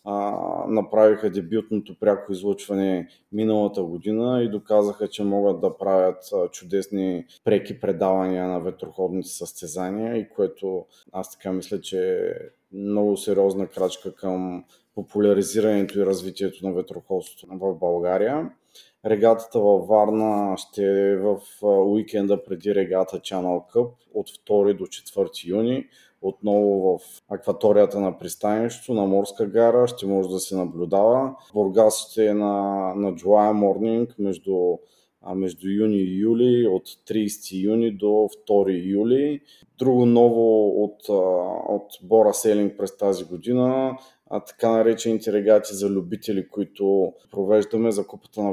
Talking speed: 125 wpm